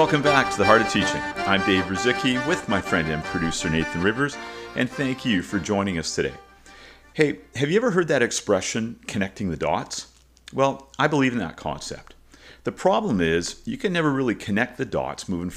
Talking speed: 195 wpm